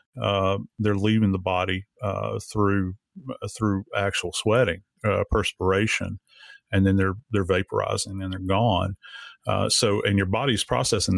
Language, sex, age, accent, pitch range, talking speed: English, male, 40-59, American, 100-120 Hz, 145 wpm